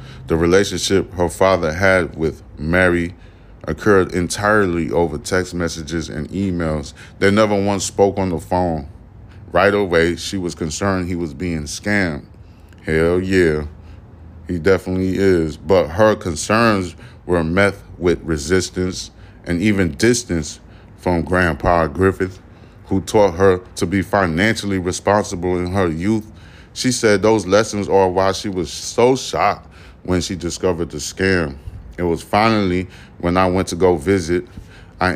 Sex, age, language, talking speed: male, 30-49, English, 140 wpm